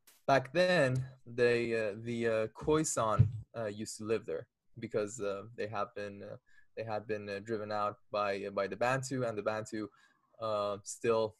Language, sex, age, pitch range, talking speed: English, male, 20-39, 105-120 Hz, 185 wpm